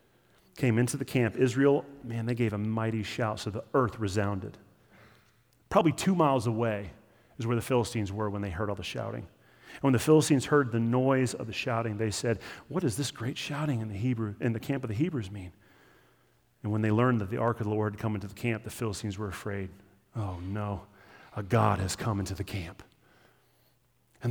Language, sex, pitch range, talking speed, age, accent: English, male, 105-140 Hz, 205 wpm, 30-49, American